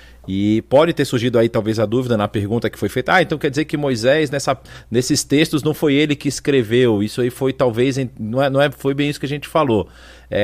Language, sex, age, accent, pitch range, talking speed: Portuguese, male, 40-59, Brazilian, 120-160 Hz, 245 wpm